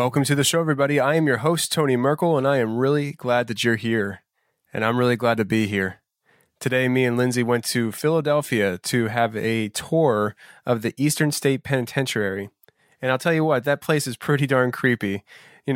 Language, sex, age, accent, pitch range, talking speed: English, male, 20-39, American, 110-135 Hz, 205 wpm